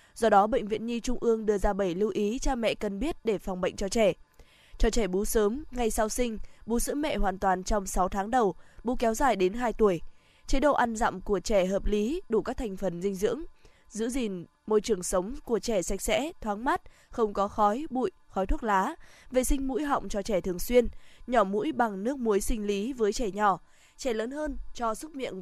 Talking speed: 235 wpm